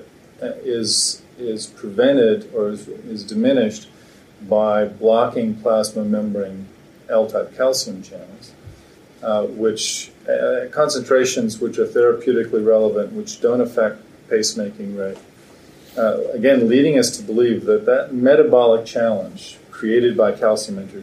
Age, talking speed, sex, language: 40-59, 115 wpm, male, English